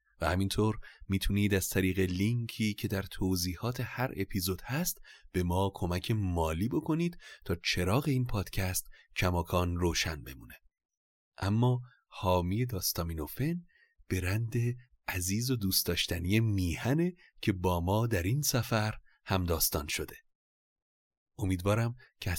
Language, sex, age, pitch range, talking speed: Persian, male, 30-49, 90-115 Hz, 120 wpm